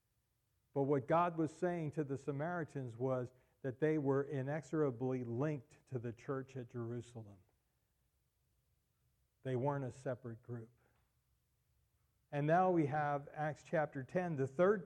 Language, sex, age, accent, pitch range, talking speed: English, male, 50-69, American, 125-155 Hz, 135 wpm